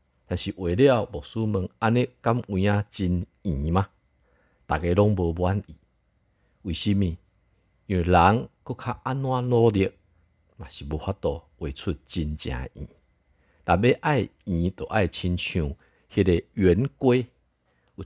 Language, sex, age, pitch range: Chinese, male, 50-69, 75-105 Hz